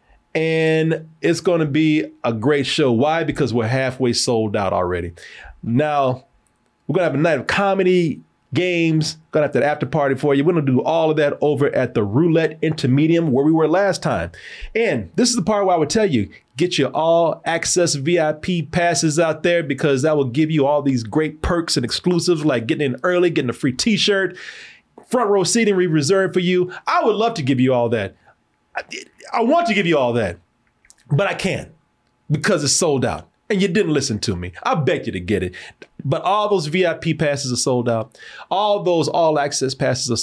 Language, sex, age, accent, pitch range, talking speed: English, male, 30-49, American, 130-175 Hz, 205 wpm